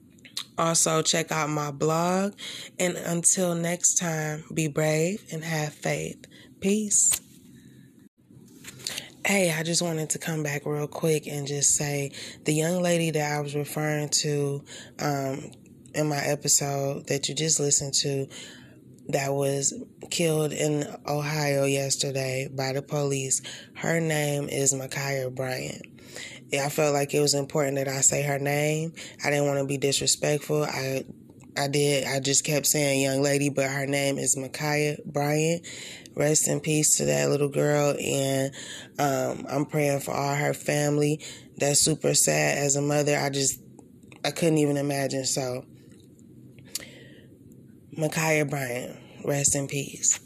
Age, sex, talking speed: 20-39, female, 150 wpm